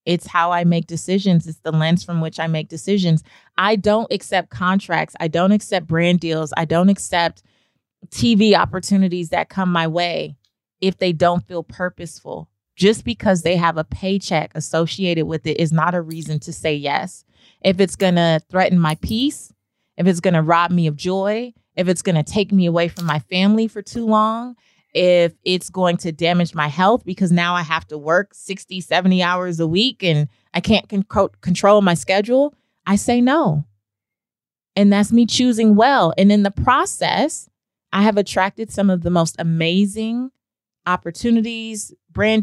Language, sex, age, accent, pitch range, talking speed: English, female, 30-49, American, 165-200 Hz, 180 wpm